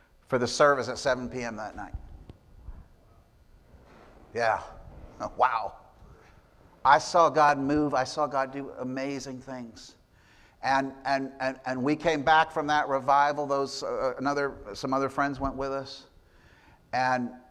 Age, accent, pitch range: 50-69, American, 115-145 Hz